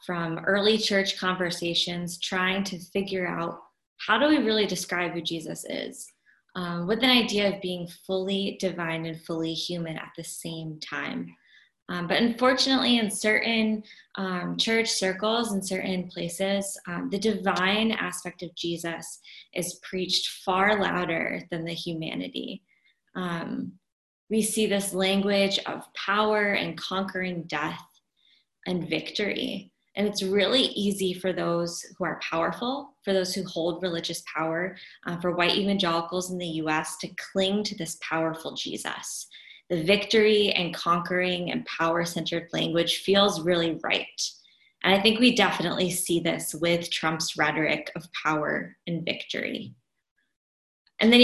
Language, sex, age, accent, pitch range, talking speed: English, female, 20-39, American, 170-200 Hz, 140 wpm